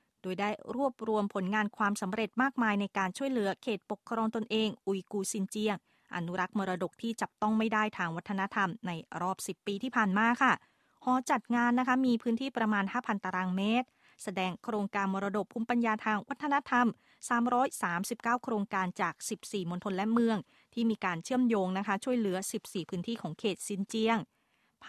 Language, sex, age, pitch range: Thai, female, 20-39, 195-240 Hz